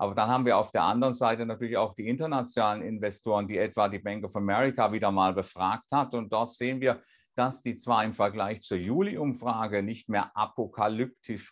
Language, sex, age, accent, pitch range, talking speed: German, male, 50-69, German, 105-125 Hz, 195 wpm